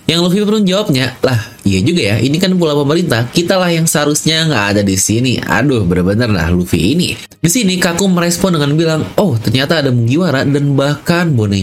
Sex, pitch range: male, 105-160 Hz